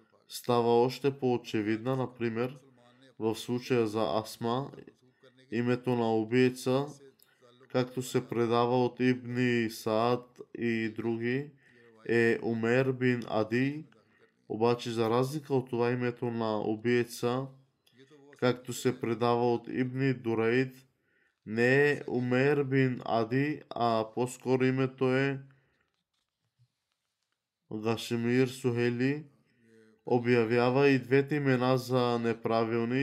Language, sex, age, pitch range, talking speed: Bulgarian, male, 20-39, 115-130 Hz, 95 wpm